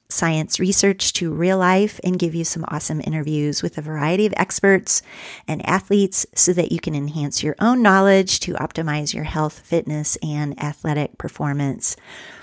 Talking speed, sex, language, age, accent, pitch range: 165 wpm, female, English, 40-59, American, 155-185 Hz